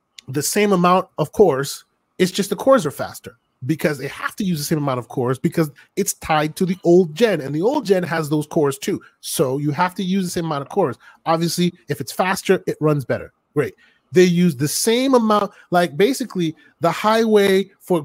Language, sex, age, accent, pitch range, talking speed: English, male, 30-49, American, 150-200 Hz, 215 wpm